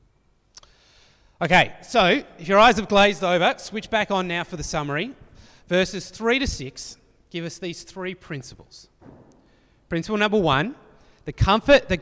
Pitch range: 125-190 Hz